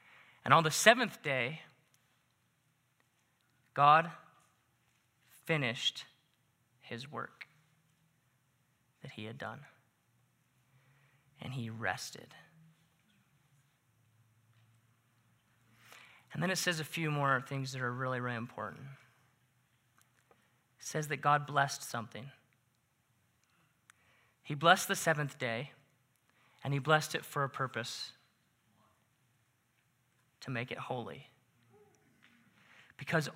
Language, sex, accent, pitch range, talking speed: English, male, American, 125-155 Hz, 95 wpm